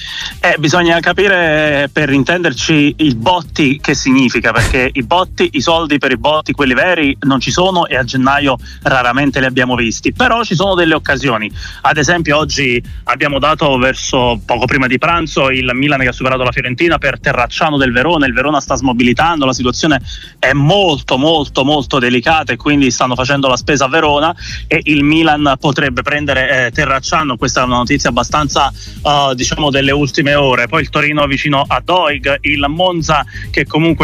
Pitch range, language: 130-160 Hz, Italian